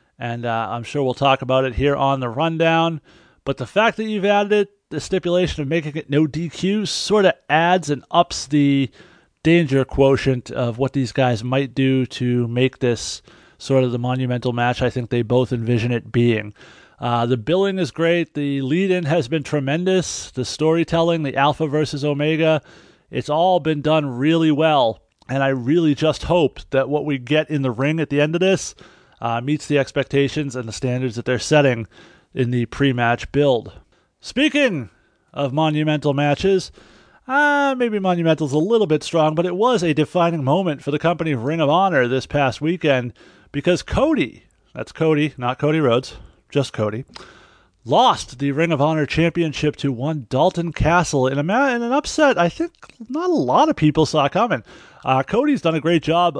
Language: English